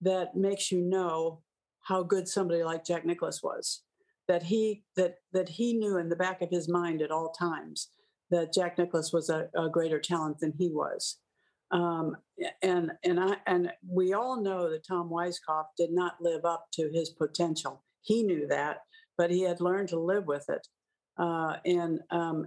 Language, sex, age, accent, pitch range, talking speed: English, female, 60-79, American, 165-190 Hz, 185 wpm